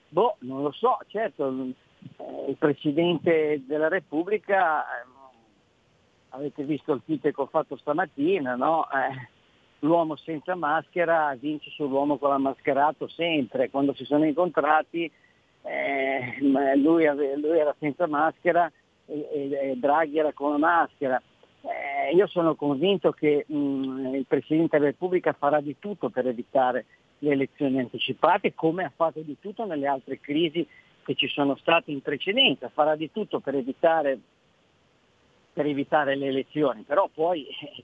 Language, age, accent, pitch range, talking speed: Italian, 50-69, native, 140-170 Hz, 130 wpm